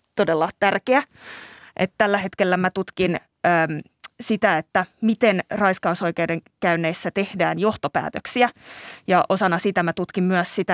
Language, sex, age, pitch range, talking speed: Finnish, female, 20-39, 175-230 Hz, 125 wpm